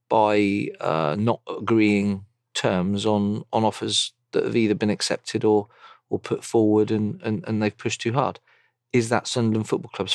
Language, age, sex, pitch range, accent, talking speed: English, 40-59, male, 100-120 Hz, British, 170 wpm